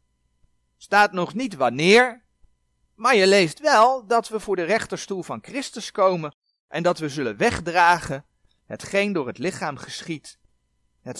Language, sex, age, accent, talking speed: Dutch, male, 40-59, Dutch, 140 wpm